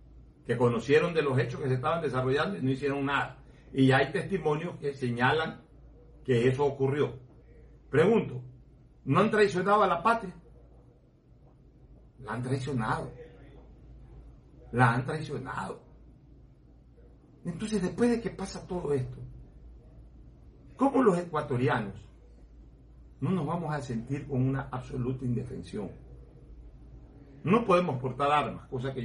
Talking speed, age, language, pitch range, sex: 120 wpm, 60-79, Spanish, 120-150 Hz, male